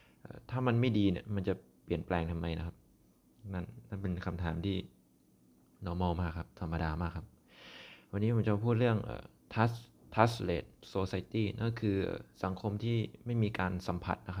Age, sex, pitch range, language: 20-39, male, 90-110 Hz, Thai